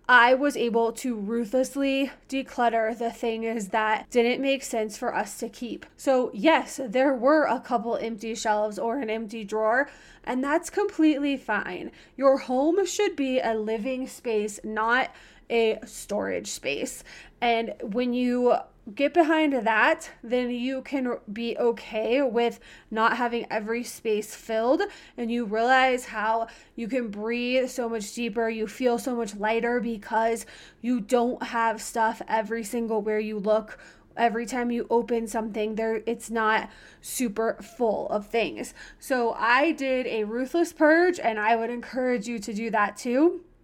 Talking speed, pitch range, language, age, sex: 155 wpm, 225-265 Hz, English, 20-39, female